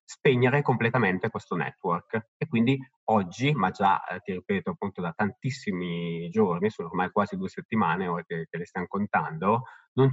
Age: 20-39